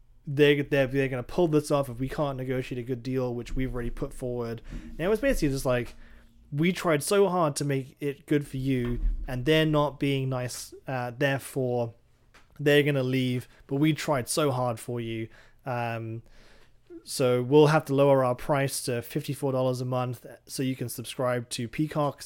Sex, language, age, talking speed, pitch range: male, English, 20-39, 190 wpm, 120-145 Hz